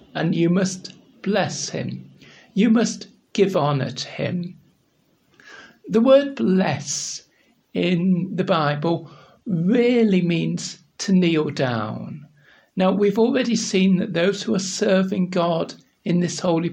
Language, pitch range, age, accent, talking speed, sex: English, 170-215 Hz, 60-79, British, 125 wpm, male